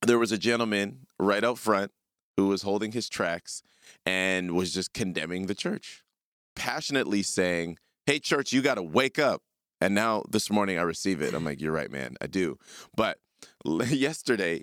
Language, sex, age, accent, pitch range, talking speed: English, male, 30-49, American, 100-160 Hz, 175 wpm